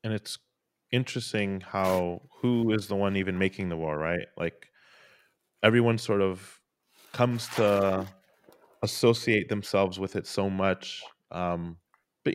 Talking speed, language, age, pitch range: 130 wpm, English, 20-39, 90-100 Hz